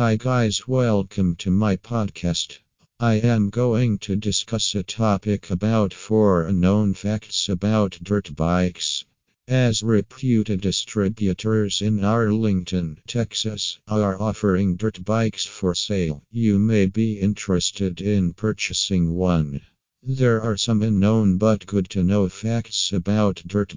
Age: 50-69